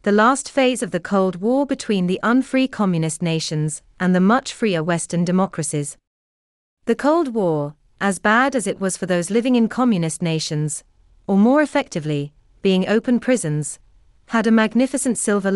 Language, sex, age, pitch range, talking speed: English, female, 30-49, 160-230 Hz, 160 wpm